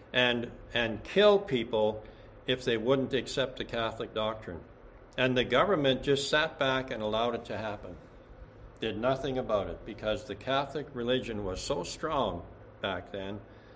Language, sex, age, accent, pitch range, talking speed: English, male, 60-79, American, 105-130 Hz, 155 wpm